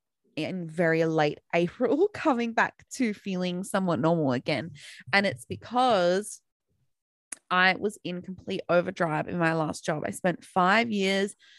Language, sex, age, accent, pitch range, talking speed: English, female, 20-39, Australian, 170-200 Hz, 140 wpm